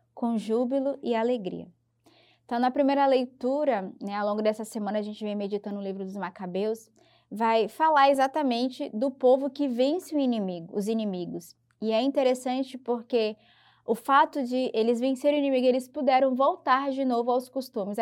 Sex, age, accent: female, 20-39, Brazilian